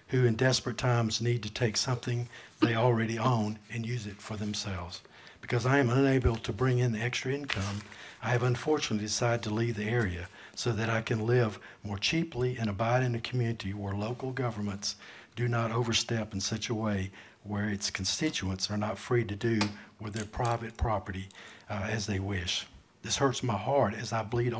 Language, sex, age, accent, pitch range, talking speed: English, male, 60-79, American, 100-125 Hz, 195 wpm